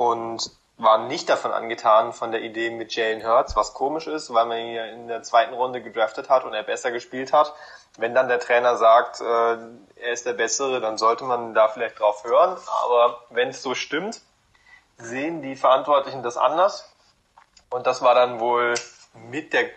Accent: German